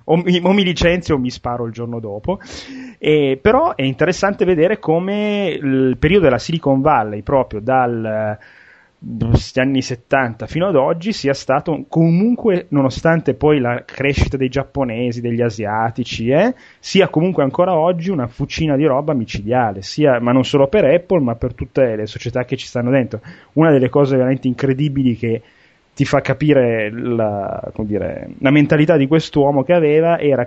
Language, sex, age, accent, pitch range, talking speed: Italian, male, 30-49, native, 125-160 Hz, 165 wpm